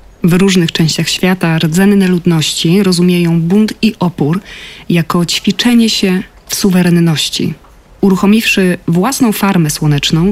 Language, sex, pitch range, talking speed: Polish, female, 165-200 Hz, 110 wpm